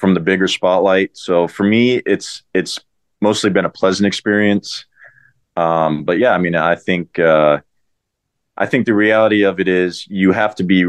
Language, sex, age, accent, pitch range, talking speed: English, male, 30-49, American, 85-100 Hz, 180 wpm